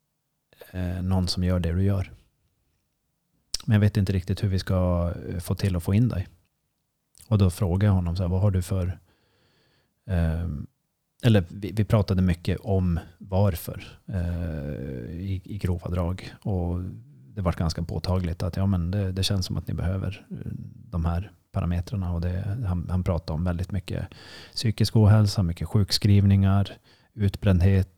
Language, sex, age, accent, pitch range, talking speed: Swedish, male, 30-49, native, 90-105 Hz, 145 wpm